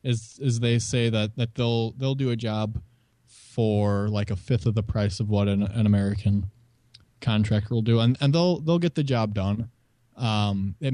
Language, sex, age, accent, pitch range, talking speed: English, male, 20-39, American, 105-120 Hz, 195 wpm